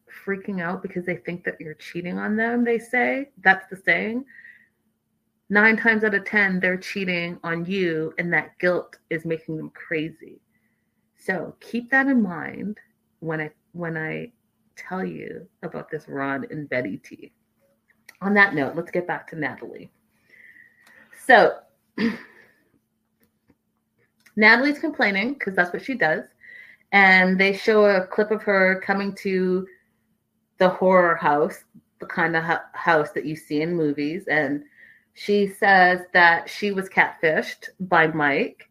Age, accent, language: 30-49, American, English